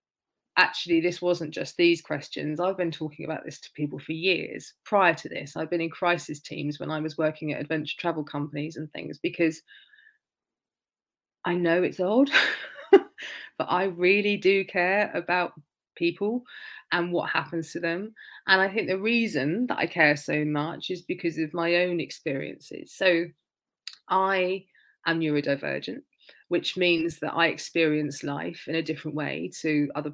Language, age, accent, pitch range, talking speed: English, 30-49, British, 155-185 Hz, 165 wpm